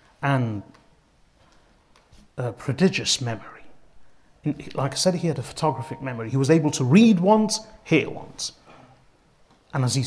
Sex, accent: male, British